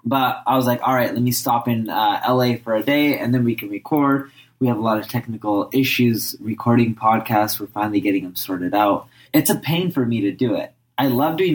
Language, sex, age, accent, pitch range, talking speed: English, male, 20-39, American, 115-140 Hz, 240 wpm